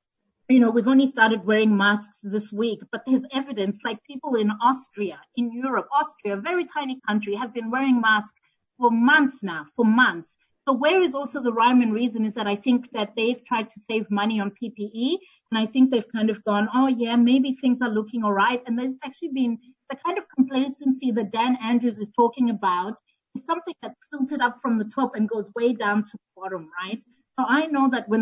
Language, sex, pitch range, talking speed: English, female, 215-260 Hz, 215 wpm